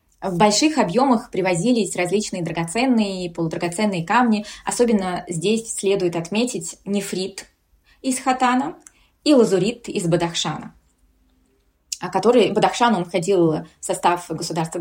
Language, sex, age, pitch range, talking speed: Russian, female, 20-39, 175-215 Hz, 100 wpm